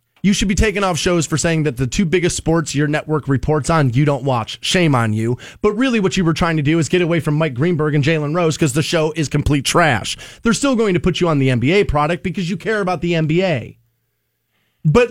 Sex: male